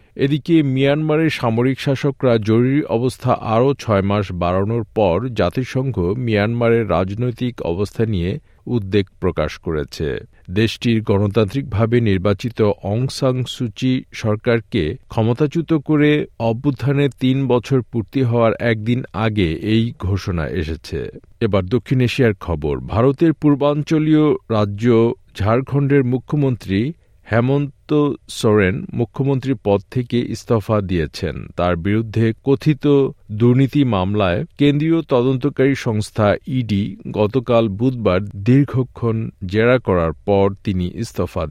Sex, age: male, 50-69